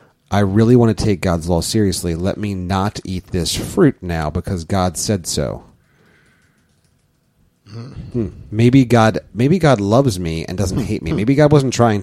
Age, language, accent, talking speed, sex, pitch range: 30-49, English, American, 170 wpm, male, 90-120 Hz